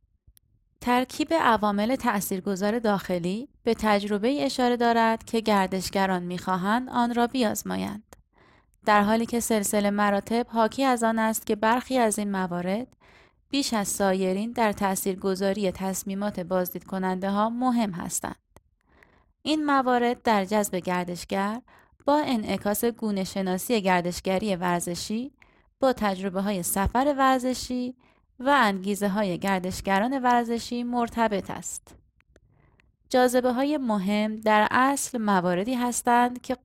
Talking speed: 115 wpm